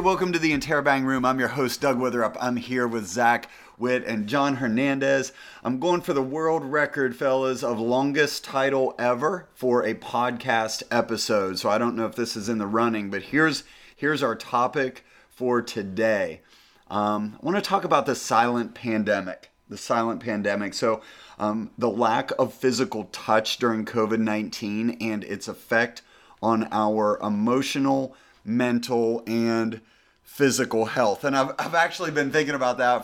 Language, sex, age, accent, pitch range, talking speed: English, male, 30-49, American, 110-135 Hz, 160 wpm